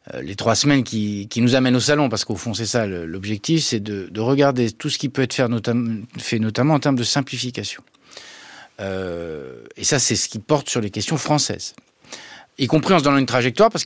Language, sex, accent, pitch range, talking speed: French, male, French, 115-145 Hz, 220 wpm